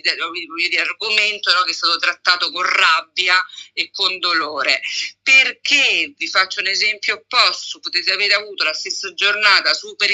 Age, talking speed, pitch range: 40-59, 160 wpm, 180-230 Hz